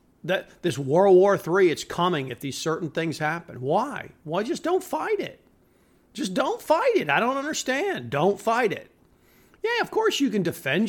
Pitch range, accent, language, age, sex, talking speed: 130-205 Hz, American, English, 50-69, male, 185 wpm